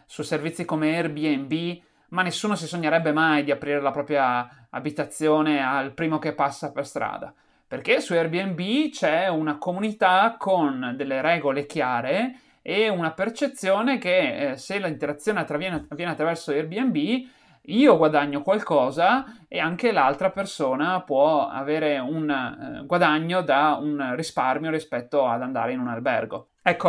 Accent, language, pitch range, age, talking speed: native, Italian, 150-195 Hz, 30-49, 135 wpm